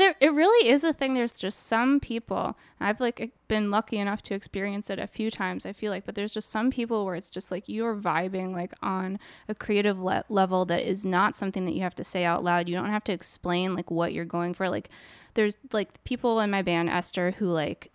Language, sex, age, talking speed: English, female, 10-29, 240 wpm